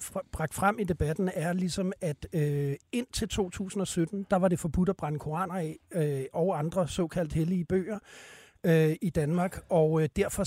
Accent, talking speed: native, 150 wpm